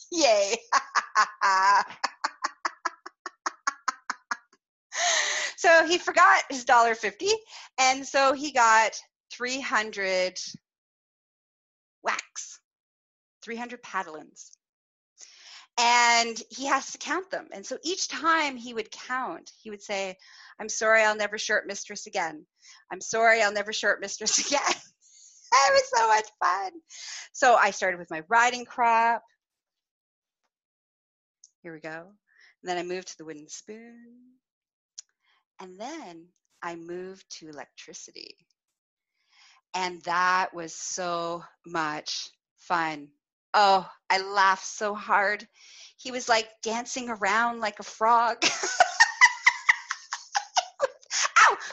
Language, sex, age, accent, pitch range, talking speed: English, female, 30-49, American, 195-300 Hz, 110 wpm